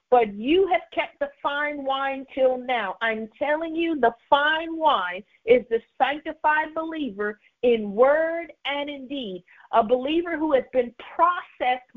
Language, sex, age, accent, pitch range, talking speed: English, female, 50-69, American, 270-335 Hz, 150 wpm